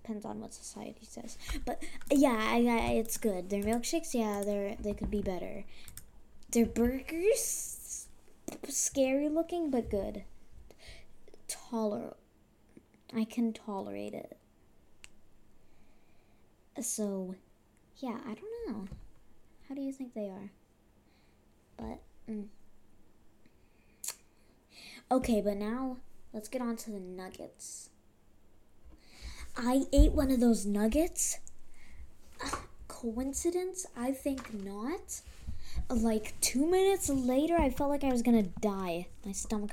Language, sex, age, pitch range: English, female, 10-29, 195-260 Hz